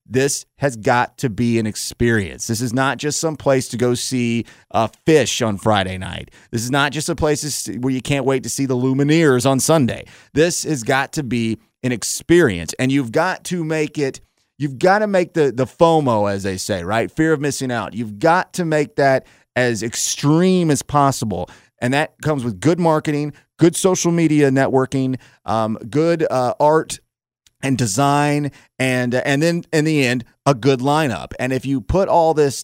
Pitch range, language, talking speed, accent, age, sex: 115-150 Hz, English, 195 wpm, American, 30-49, male